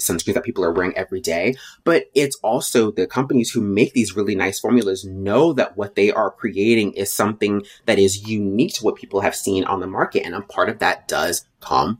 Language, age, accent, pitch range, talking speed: English, 30-49, American, 95-120 Hz, 220 wpm